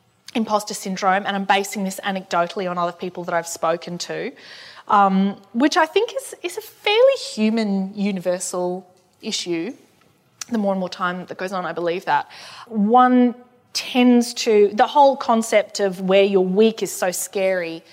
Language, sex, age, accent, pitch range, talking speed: English, female, 20-39, Australian, 185-225 Hz, 165 wpm